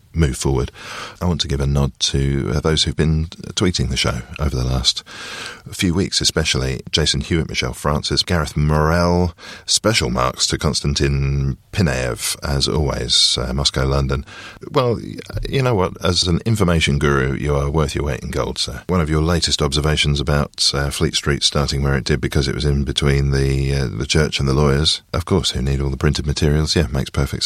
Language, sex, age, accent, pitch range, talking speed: English, male, 40-59, British, 70-85 Hz, 195 wpm